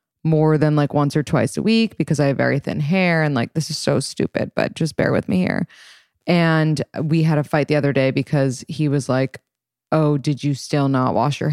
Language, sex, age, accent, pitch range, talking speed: English, female, 20-39, American, 140-180 Hz, 235 wpm